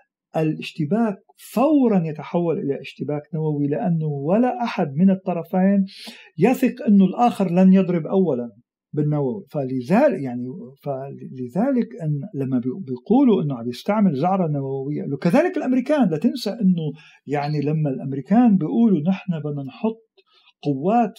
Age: 50-69